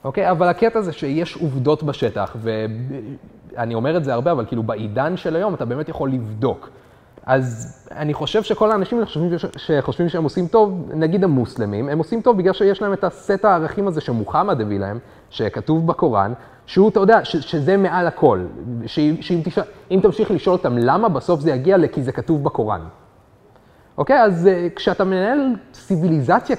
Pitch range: 130-190 Hz